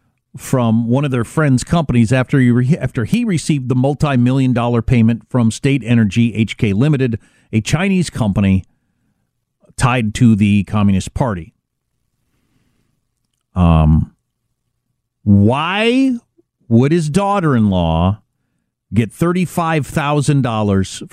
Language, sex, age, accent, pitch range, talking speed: English, male, 50-69, American, 115-155 Hz, 95 wpm